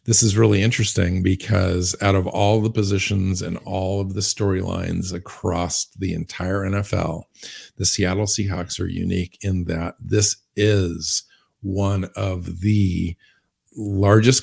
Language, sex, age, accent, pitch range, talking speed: English, male, 50-69, American, 95-110 Hz, 135 wpm